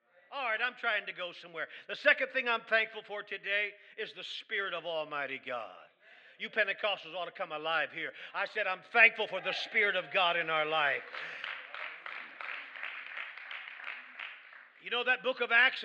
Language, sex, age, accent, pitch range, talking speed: English, male, 50-69, American, 210-265 Hz, 170 wpm